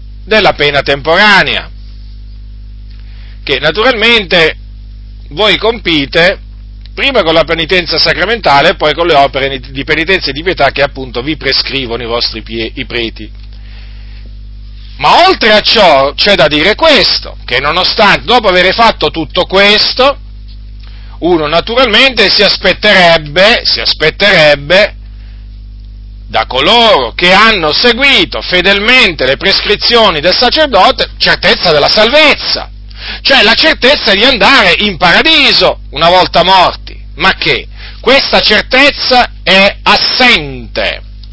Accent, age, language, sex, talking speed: native, 40-59, Italian, male, 115 wpm